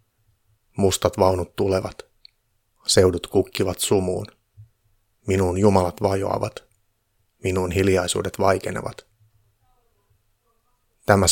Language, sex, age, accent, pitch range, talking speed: Finnish, male, 30-49, native, 95-105 Hz, 70 wpm